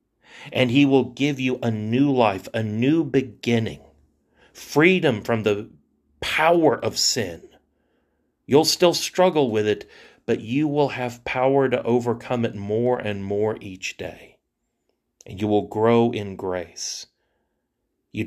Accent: American